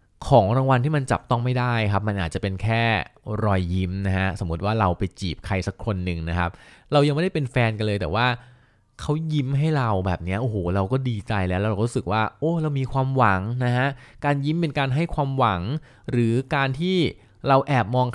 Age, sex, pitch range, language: 20-39, male, 100-135 Hz, Thai